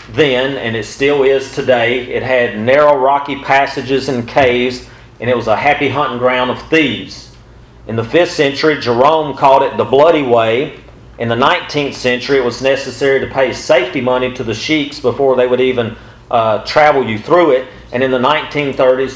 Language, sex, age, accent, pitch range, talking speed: English, male, 40-59, American, 130-170 Hz, 185 wpm